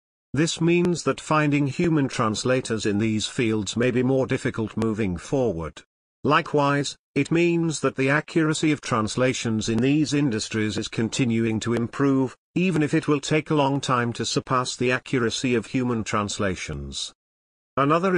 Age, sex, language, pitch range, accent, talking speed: 50-69, male, English, 110-145 Hz, British, 150 wpm